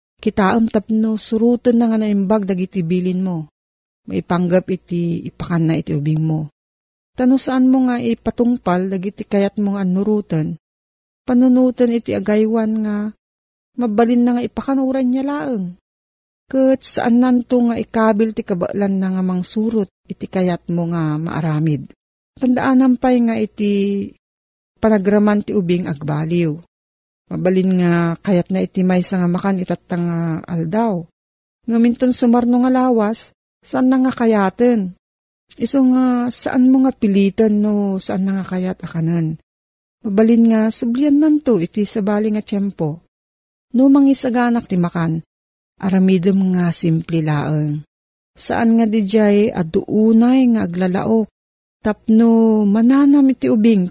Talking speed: 130 wpm